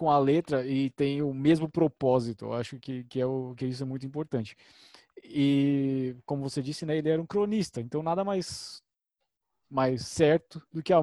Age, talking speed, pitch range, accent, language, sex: 20-39, 195 wpm, 130-160 Hz, Brazilian, Portuguese, male